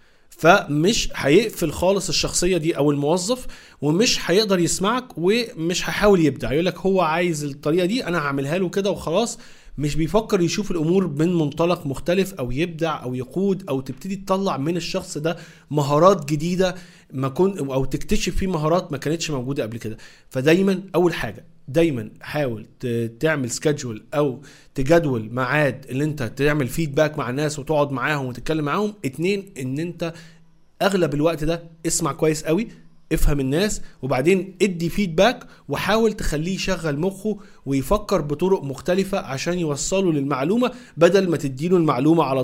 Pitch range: 140-185 Hz